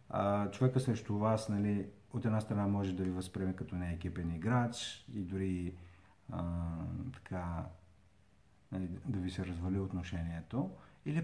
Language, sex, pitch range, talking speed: Bulgarian, male, 95-125 Hz, 140 wpm